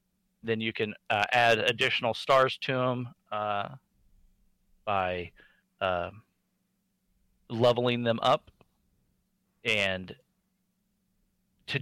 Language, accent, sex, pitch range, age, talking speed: English, American, male, 115-150 Hz, 40-59, 85 wpm